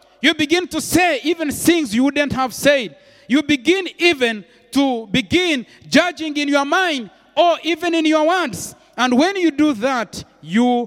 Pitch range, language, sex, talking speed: 210-305 Hz, English, male, 165 wpm